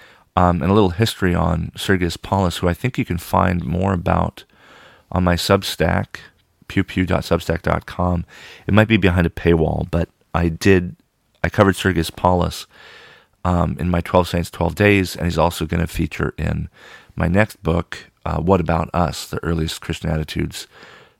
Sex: male